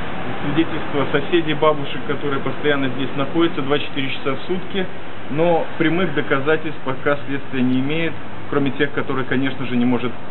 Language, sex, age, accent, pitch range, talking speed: Russian, male, 20-39, native, 120-155 Hz, 145 wpm